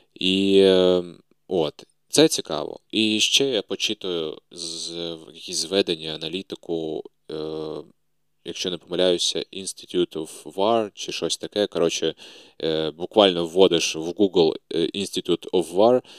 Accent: native